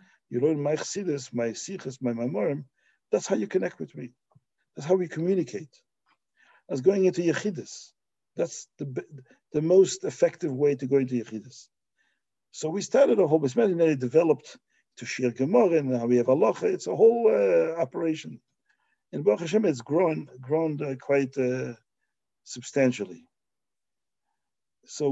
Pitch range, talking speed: 125-175 Hz, 160 wpm